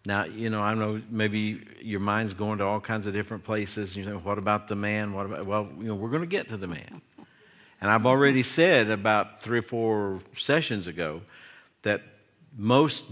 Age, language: 60-79, English